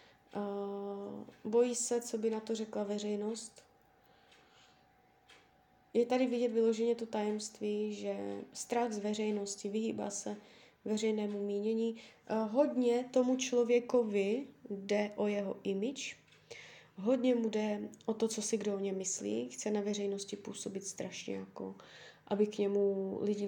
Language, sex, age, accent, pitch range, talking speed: Czech, female, 20-39, native, 200-225 Hz, 135 wpm